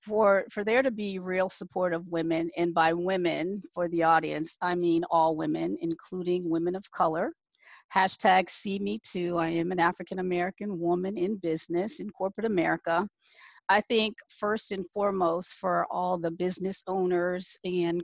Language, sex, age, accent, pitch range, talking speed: English, female, 40-59, American, 175-205 Hz, 160 wpm